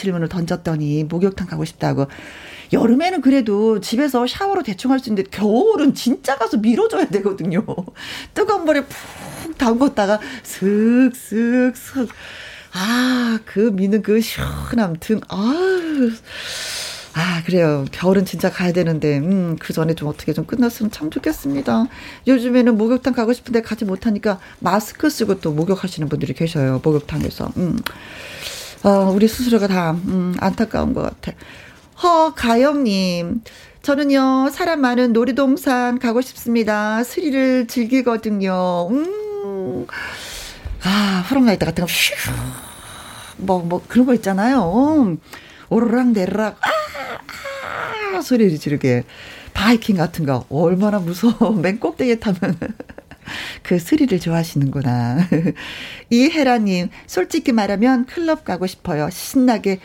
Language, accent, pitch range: Korean, native, 180-260 Hz